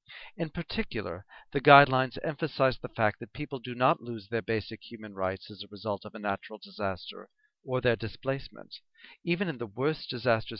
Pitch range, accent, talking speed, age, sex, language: 110-140 Hz, American, 175 wpm, 40-59, male, English